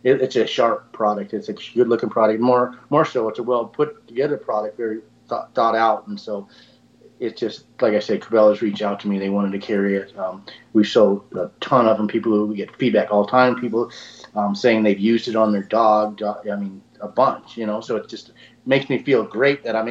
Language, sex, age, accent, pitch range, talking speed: English, male, 30-49, American, 105-120 Hz, 225 wpm